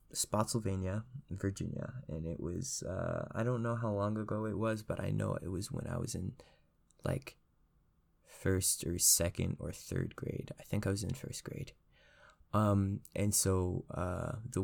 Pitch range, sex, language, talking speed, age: 90-110 Hz, male, English, 170 wpm, 20-39